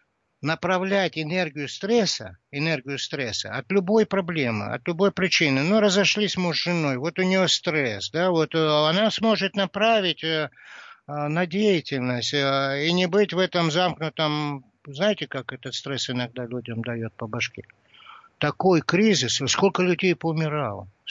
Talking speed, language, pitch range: 135 wpm, Russian, 140-185 Hz